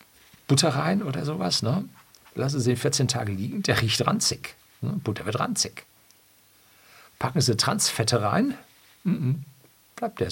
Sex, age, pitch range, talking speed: male, 50-69, 100-140 Hz, 130 wpm